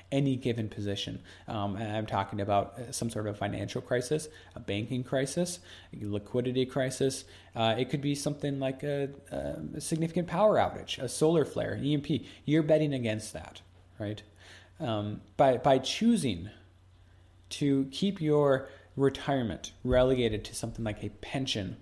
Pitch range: 100-135 Hz